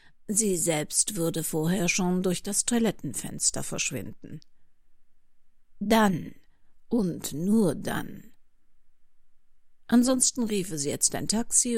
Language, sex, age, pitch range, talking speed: German, female, 60-79, 155-210 Hz, 95 wpm